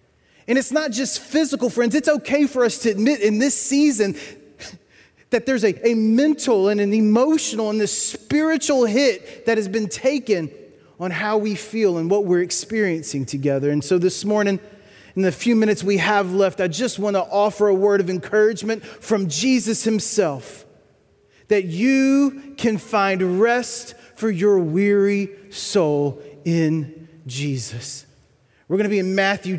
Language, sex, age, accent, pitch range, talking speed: English, male, 30-49, American, 165-225 Hz, 160 wpm